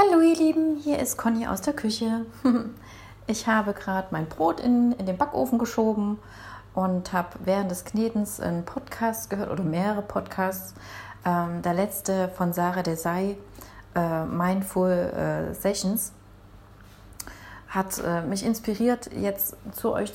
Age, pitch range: 30-49, 155-210 Hz